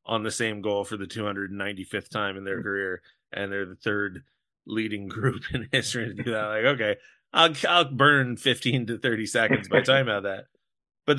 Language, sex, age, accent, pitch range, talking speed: English, male, 30-49, American, 105-125 Hz, 195 wpm